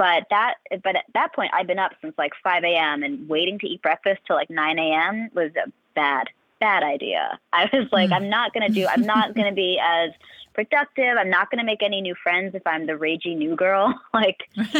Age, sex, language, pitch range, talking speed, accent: 20-39, female, English, 170-220 Hz, 230 wpm, American